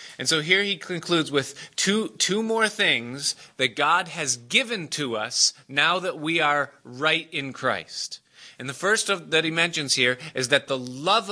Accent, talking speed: American, 185 wpm